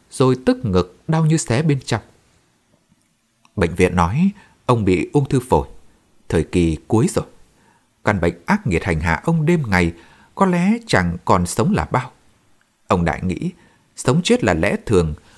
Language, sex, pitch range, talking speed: Vietnamese, male, 95-160 Hz, 170 wpm